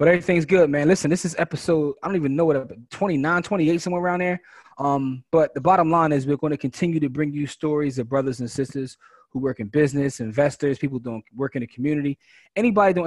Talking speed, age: 230 wpm, 20-39